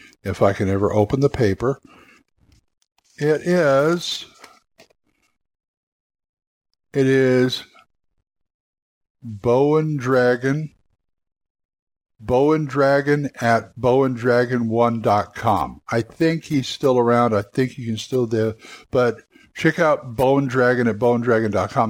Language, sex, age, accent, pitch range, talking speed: English, male, 60-79, American, 115-145 Hz, 95 wpm